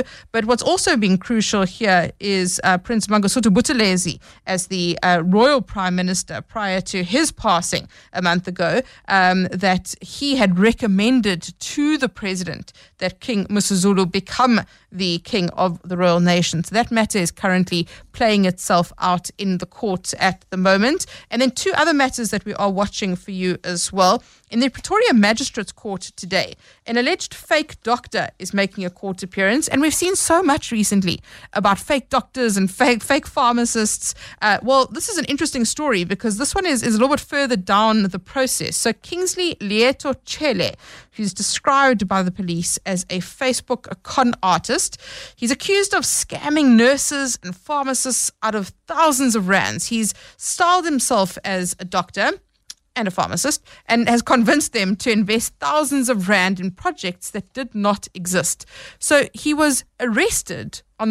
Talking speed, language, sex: 170 wpm, English, female